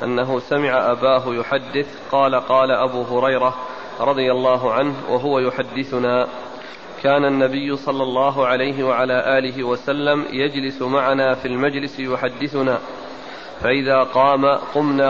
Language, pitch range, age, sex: Arabic, 130-145 Hz, 40-59, male